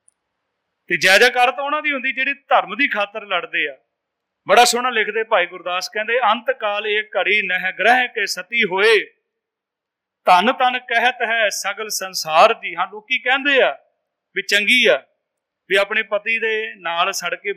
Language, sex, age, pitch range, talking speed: Punjabi, male, 40-59, 195-250 Hz, 155 wpm